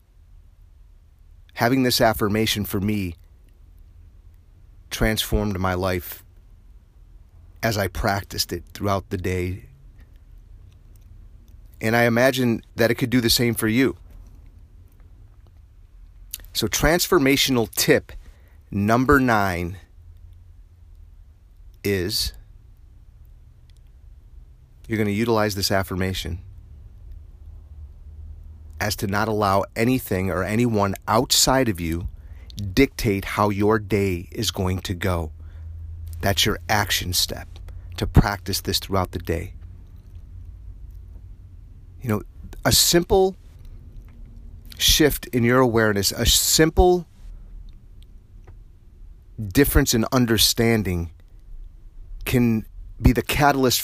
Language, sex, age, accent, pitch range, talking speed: English, male, 40-59, American, 85-105 Hz, 95 wpm